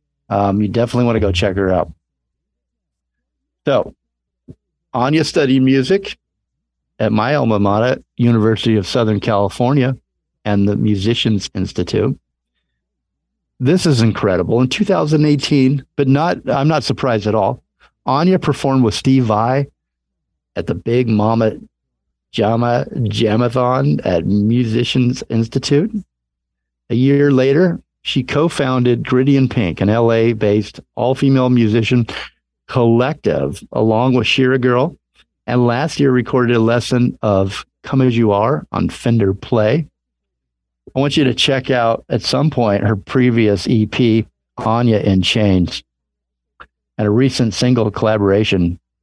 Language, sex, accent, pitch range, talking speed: English, male, American, 95-130 Hz, 125 wpm